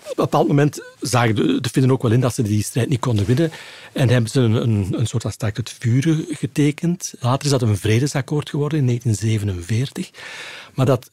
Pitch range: 110-145 Hz